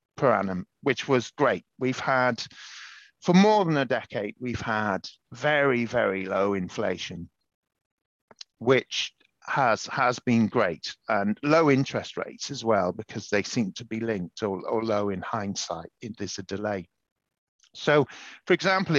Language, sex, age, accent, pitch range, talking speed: English, male, 50-69, British, 105-145 Hz, 150 wpm